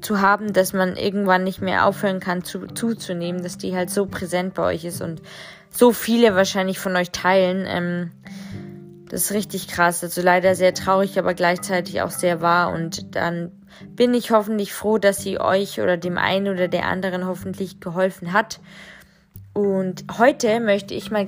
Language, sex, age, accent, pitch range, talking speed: German, female, 20-39, German, 180-220 Hz, 180 wpm